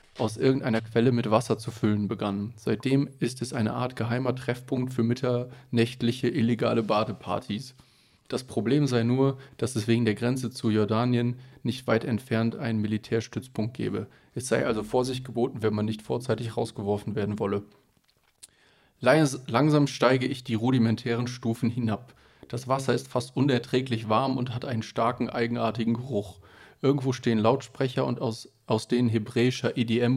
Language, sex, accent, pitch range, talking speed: German, male, German, 115-130 Hz, 150 wpm